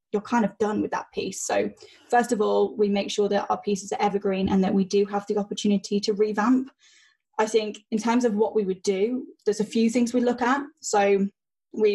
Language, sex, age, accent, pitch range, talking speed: English, female, 10-29, British, 200-235 Hz, 230 wpm